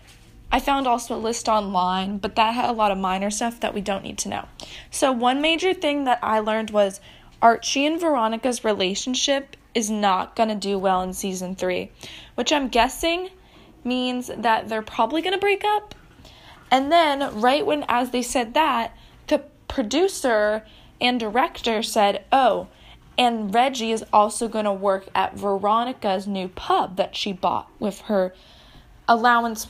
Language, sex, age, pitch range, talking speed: English, female, 20-39, 210-270 Hz, 170 wpm